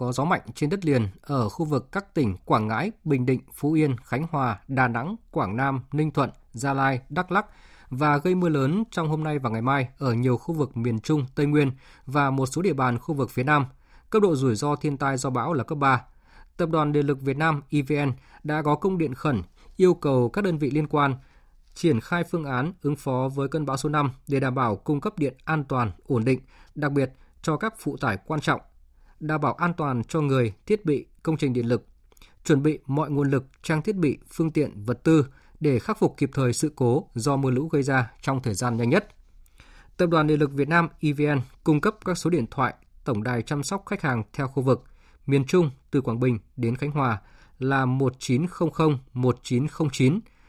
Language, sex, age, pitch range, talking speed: Vietnamese, male, 20-39, 130-155 Hz, 225 wpm